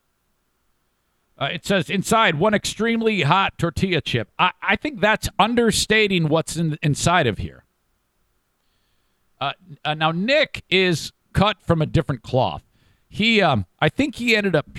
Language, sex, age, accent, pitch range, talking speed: English, male, 50-69, American, 110-170 Hz, 145 wpm